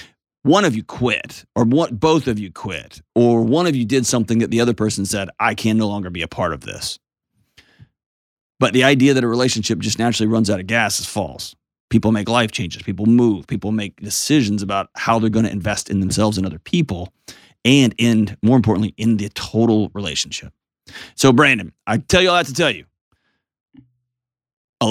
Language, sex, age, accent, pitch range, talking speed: English, male, 30-49, American, 100-125 Hz, 200 wpm